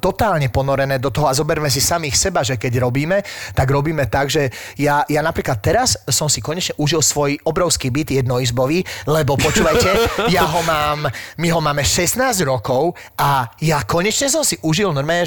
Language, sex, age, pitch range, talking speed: Slovak, male, 30-49, 135-170 Hz, 175 wpm